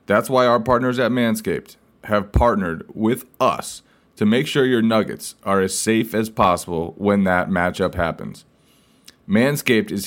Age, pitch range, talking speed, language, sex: 20-39, 100-125 Hz, 155 wpm, English, male